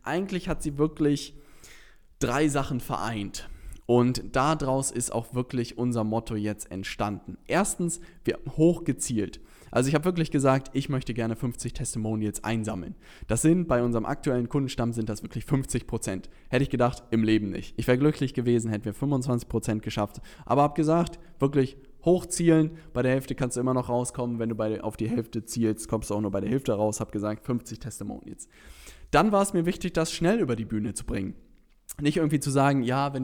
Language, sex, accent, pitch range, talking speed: German, male, German, 115-145 Hz, 190 wpm